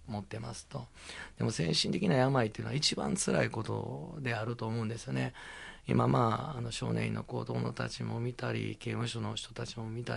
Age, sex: 40-59, male